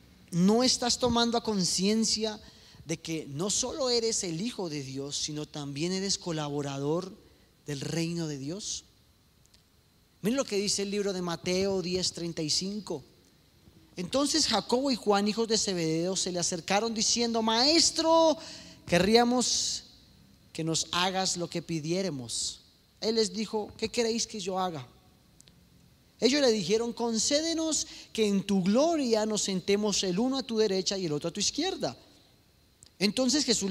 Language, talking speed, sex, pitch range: Spanish, 140 wpm, male, 170-230 Hz